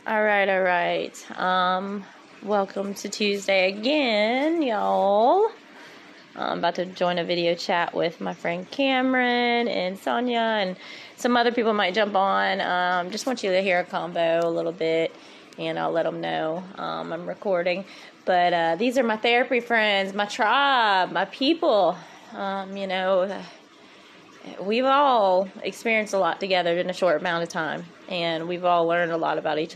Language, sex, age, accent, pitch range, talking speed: English, female, 20-39, American, 175-235 Hz, 165 wpm